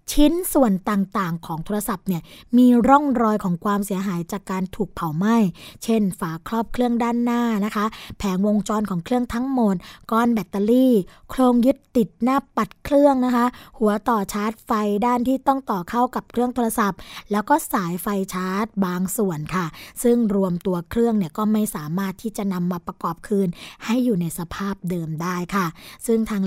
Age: 20-39